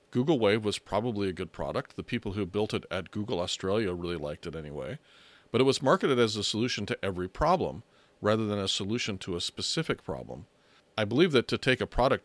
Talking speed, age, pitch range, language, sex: 215 wpm, 40-59, 95-120 Hz, English, male